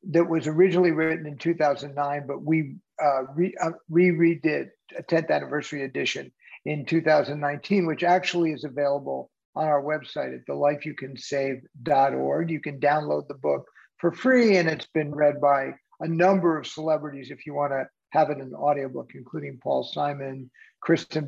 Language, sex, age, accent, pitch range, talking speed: English, male, 50-69, American, 145-165 Hz, 160 wpm